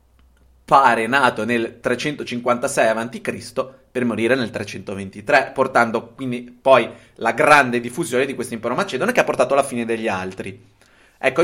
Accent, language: native, Italian